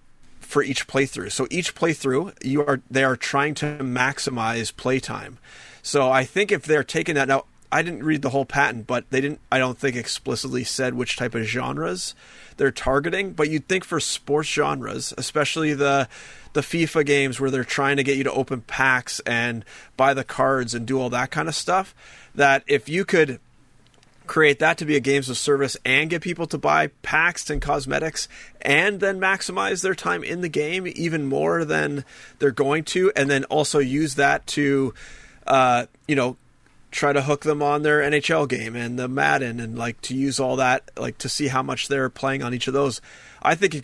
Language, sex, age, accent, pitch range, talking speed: English, male, 30-49, American, 125-150 Hz, 200 wpm